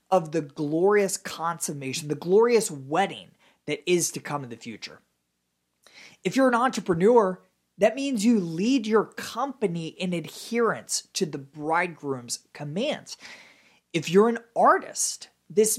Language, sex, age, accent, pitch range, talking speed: English, male, 30-49, American, 150-220 Hz, 135 wpm